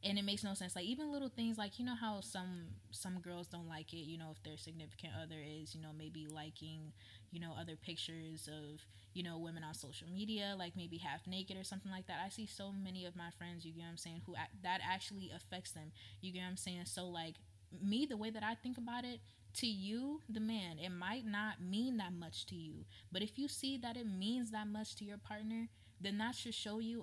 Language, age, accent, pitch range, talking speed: English, 20-39, American, 160-210 Hz, 245 wpm